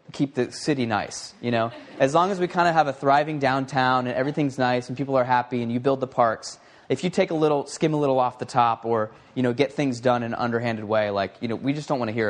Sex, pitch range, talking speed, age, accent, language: male, 120-155 Hz, 285 wpm, 20-39, American, English